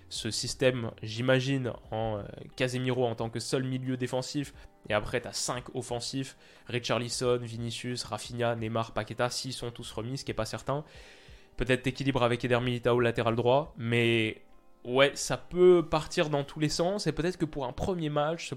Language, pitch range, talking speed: French, 115-140 Hz, 180 wpm